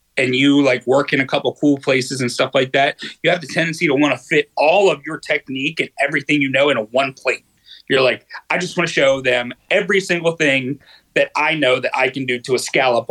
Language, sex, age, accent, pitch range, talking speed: English, male, 30-49, American, 130-165 Hz, 245 wpm